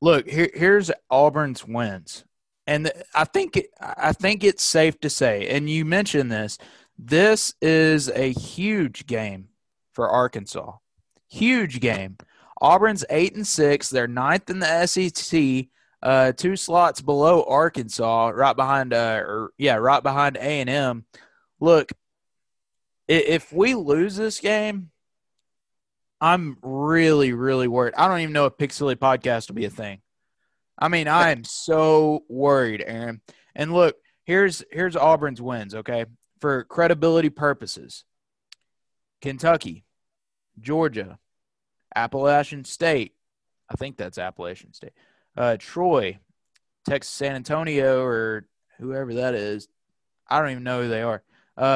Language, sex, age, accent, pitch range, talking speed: English, male, 20-39, American, 125-165 Hz, 135 wpm